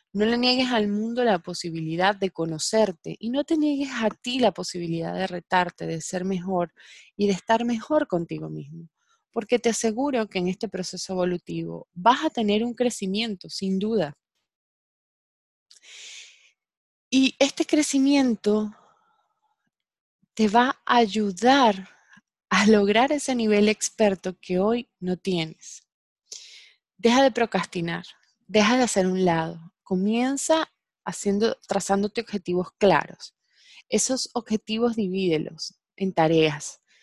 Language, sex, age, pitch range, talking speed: Spanish, female, 20-39, 175-235 Hz, 125 wpm